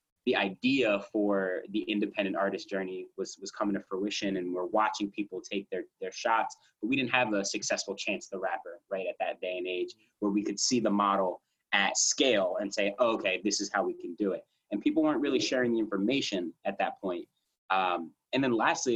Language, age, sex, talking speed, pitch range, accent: English, 20-39, male, 210 wpm, 100-125 Hz, American